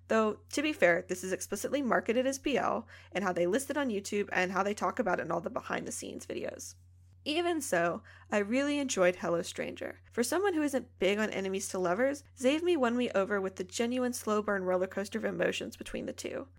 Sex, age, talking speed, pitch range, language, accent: female, 10-29, 230 wpm, 185-260 Hz, English, American